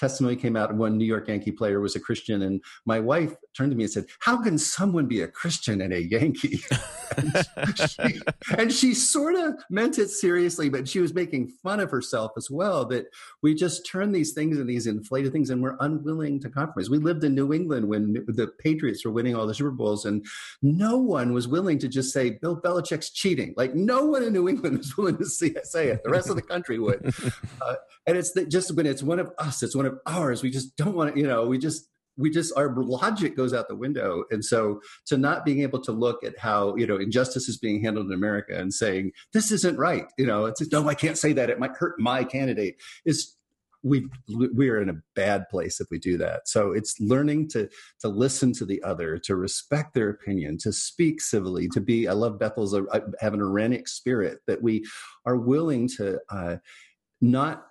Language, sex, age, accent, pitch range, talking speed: English, male, 50-69, American, 110-160 Hz, 220 wpm